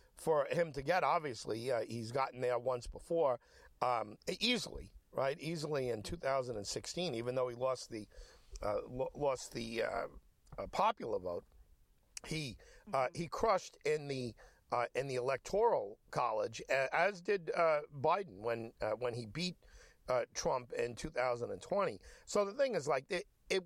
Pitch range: 130-190 Hz